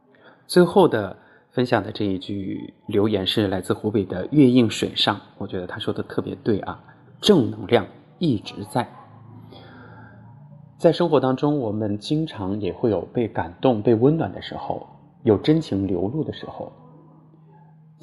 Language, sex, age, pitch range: Chinese, male, 20-39, 100-145 Hz